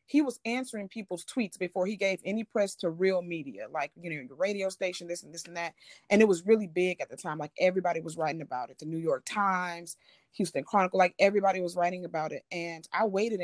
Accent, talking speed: American, 235 wpm